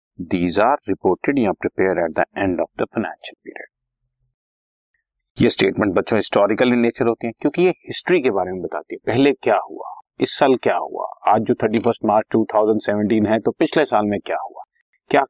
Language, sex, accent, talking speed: Hindi, male, native, 95 wpm